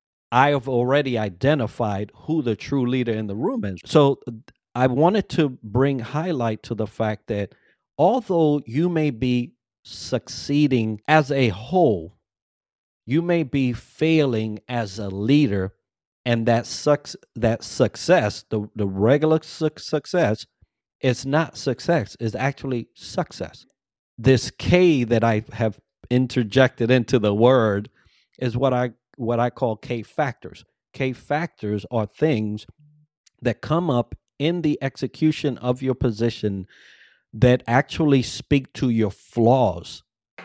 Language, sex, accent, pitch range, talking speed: English, male, American, 110-145 Hz, 130 wpm